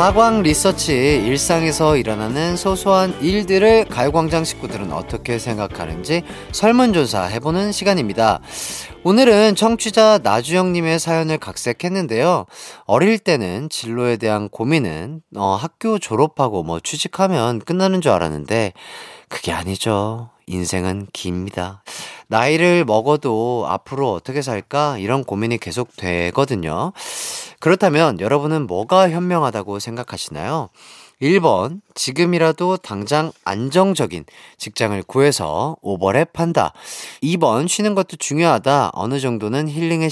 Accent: native